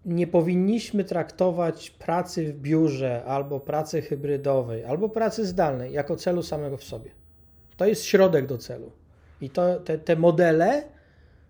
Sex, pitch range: male, 140-185 Hz